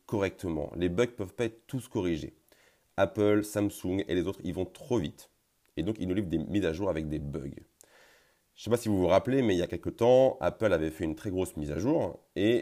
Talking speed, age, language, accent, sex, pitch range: 255 wpm, 30-49, French, French, male, 80-105 Hz